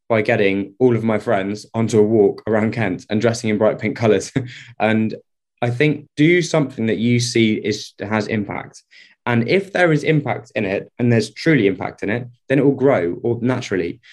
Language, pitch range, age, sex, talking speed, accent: English, 110-135 Hz, 20-39, male, 200 wpm, British